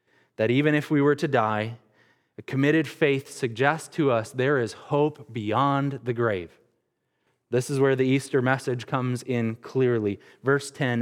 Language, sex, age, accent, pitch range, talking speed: English, male, 20-39, American, 120-150 Hz, 165 wpm